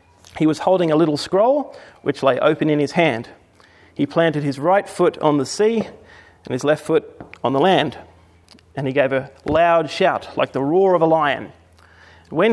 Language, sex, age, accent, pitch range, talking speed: English, male, 30-49, Australian, 130-165 Hz, 190 wpm